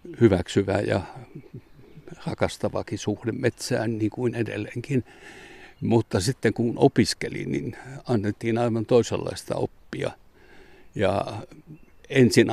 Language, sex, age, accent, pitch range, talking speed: Finnish, male, 60-79, native, 115-135 Hz, 90 wpm